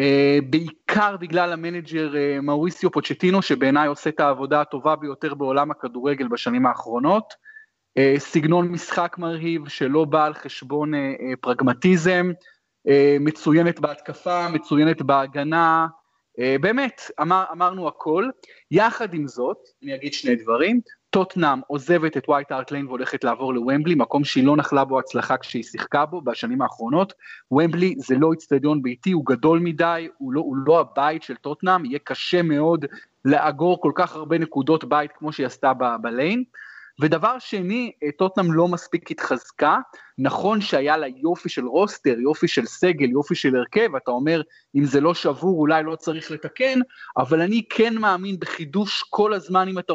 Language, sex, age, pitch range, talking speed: Hebrew, male, 30-49, 145-185 Hz, 155 wpm